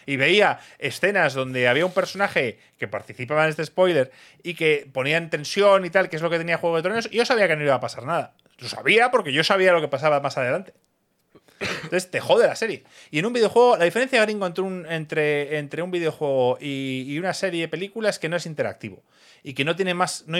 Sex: male